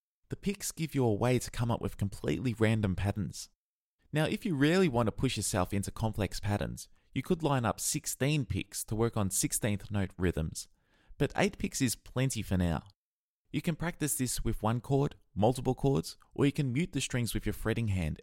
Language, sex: English, male